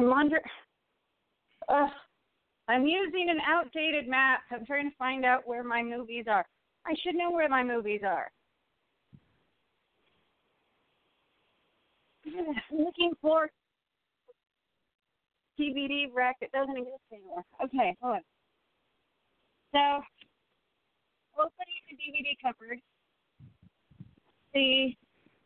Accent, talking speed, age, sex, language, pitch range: American, 100 wpm, 40-59, female, English, 245-310 Hz